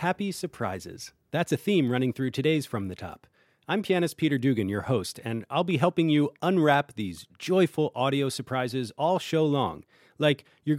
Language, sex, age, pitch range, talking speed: English, male, 40-59, 115-155 Hz, 180 wpm